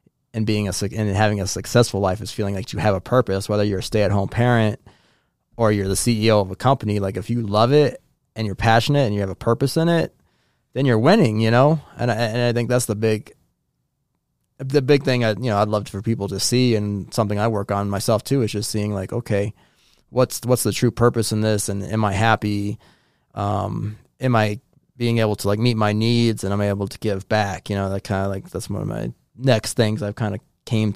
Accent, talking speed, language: American, 240 wpm, English